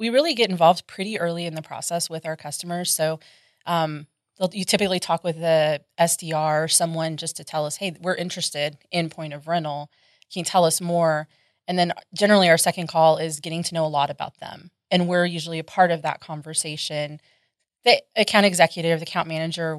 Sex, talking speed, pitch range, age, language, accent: female, 205 wpm, 155-175 Hz, 20-39, English, American